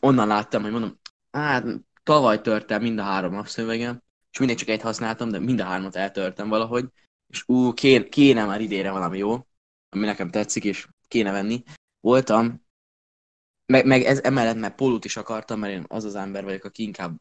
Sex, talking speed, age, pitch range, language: male, 185 wpm, 10-29, 100-125 Hz, Hungarian